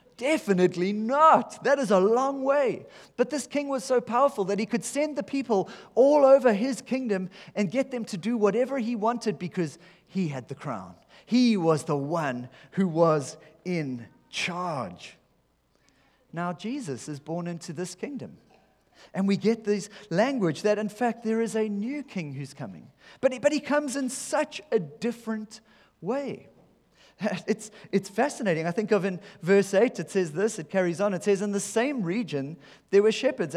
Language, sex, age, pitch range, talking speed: English, male, 30-49, 175-230 Hz, 175 wpm